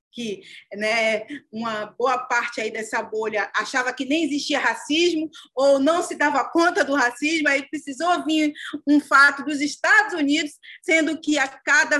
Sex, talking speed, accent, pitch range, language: female, 155 wpm, Brazilian, 220-295 Hz, Portuguese